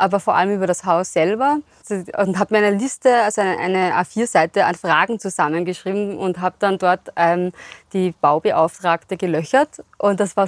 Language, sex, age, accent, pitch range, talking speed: German, female, 20-39, German, 180-210 Hz, 170 wpm